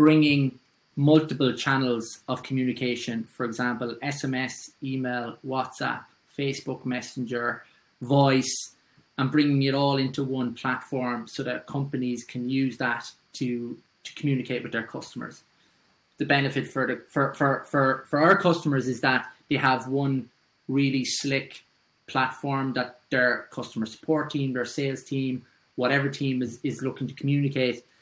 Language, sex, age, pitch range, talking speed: English, male, 20-39, 125-145 Hz, 140 wpm